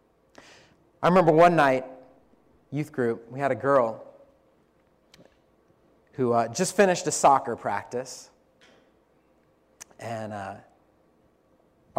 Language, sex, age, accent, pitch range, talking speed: English, male, 30-49, American, 125-175 Hz, 95 wpm